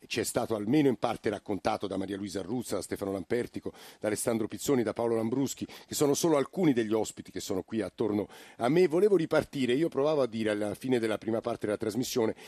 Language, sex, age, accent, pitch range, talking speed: Italian, male, 50-69, native, 105-130 Hz, 215 wpm